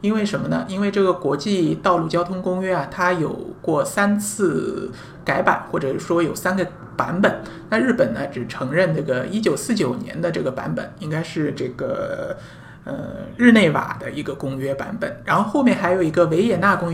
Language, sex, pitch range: Chinese, male, 145-195 Hz